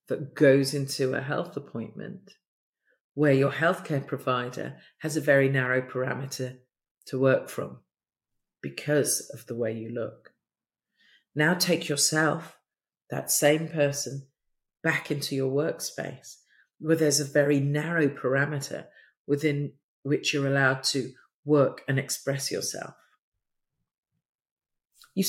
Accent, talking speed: British, 120 wpm